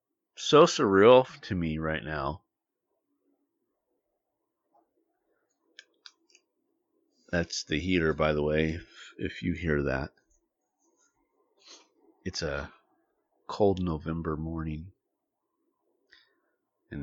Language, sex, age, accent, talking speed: English, male, 40-59, American, 80 wpm